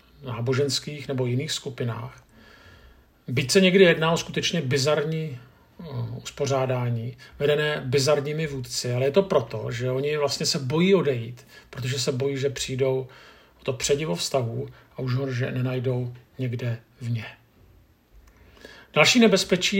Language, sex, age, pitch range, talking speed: Czech, male, 50-69, 130-155 Hz, 130 wpm